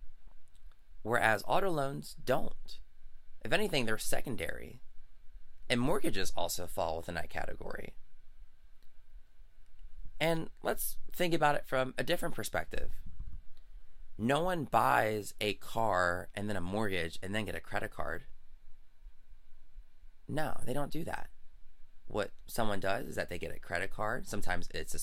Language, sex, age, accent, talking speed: English, male, 20-39, American, 135 wpm